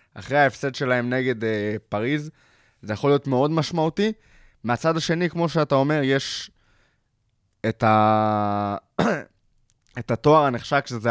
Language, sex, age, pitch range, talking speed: Hebrew, male, 20-39, 110-135 Hz, 125 wpm